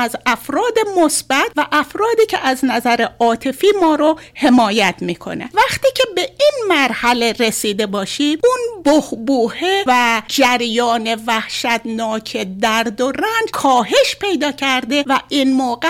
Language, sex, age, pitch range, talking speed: Persian, female, 60-79, 235-350 Hz, 130 wpm